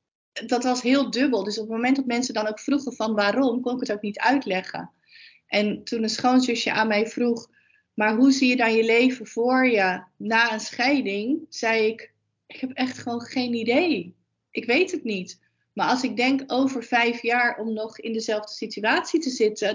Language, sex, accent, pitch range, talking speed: Dutch, female, Dutch, 220-260 Hz, 200 wpm